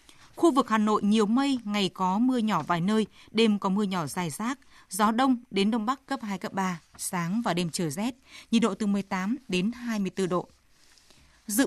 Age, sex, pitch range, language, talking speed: 20-39, female, 195-245 Hz, Vietnamese, 205 wpm